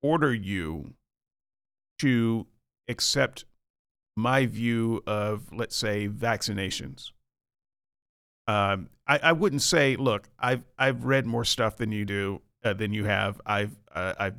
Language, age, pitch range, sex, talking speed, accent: English, 40-59, 110-160 Hz, male, 130 wpm, American